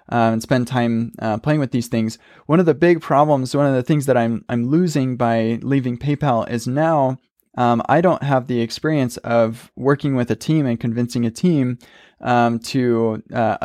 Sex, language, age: male, English, 20-39